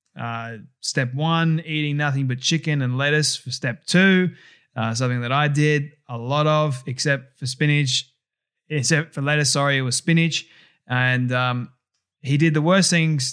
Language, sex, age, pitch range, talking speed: English, male, 20-39, 130-145 Hz, 165 wpm